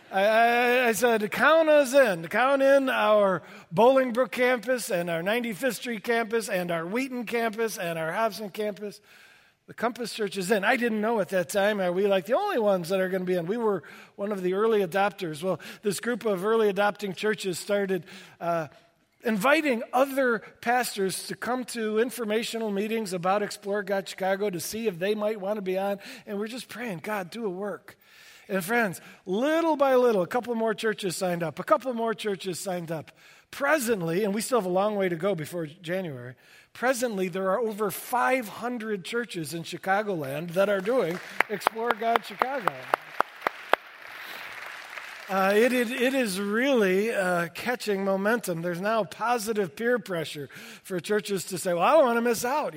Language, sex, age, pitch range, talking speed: English, male, 50-69, 190-235 Hz, 180 wpm